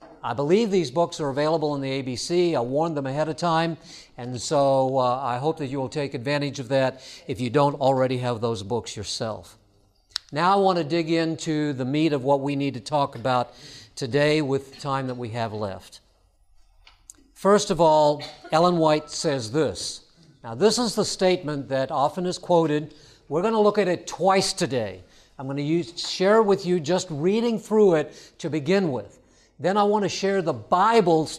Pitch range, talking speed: 135-175 Hz, 195 wpm